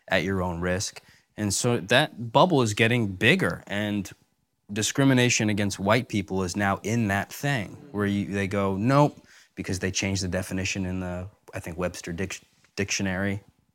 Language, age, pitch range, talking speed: English, 20-39, 95-115 Hz, 165 wpm